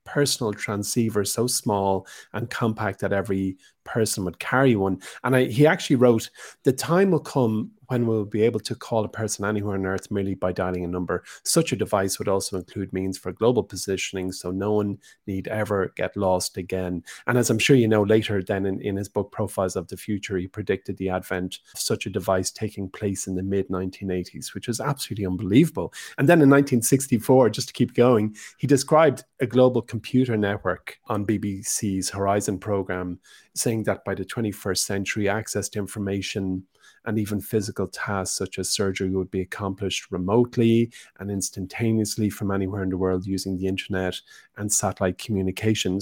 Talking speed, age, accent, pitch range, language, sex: 180 wpm, 30-49, Irish, 95-115 Hz, English, male